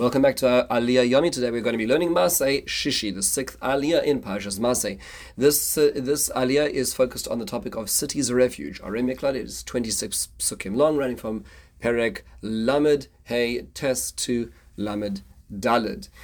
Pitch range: 110-140 Hz